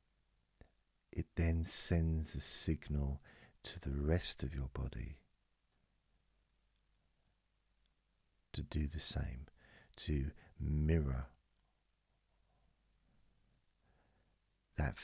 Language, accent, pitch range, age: English, British, 70-90 Hz, 50-69